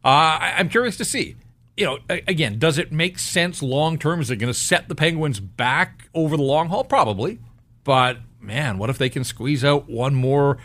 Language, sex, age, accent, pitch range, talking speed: English, male, 40-59, American, 120-160 Hz, 205 wpm